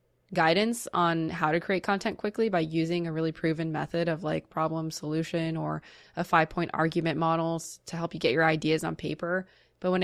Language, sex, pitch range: English, female, 160-180 Hz